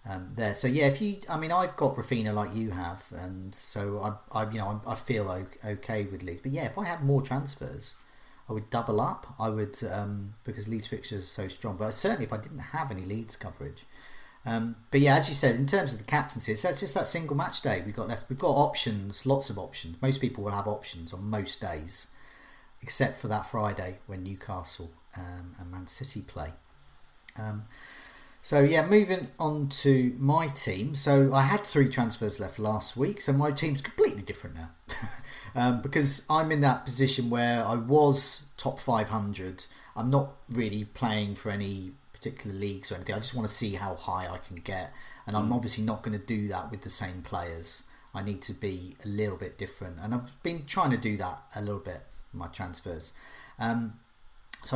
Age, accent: 40-59, British